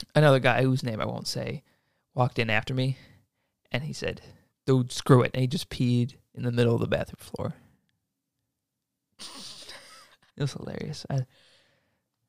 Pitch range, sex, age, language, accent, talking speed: 120-140 Hz, male, 20-39, English, American, 155 wpm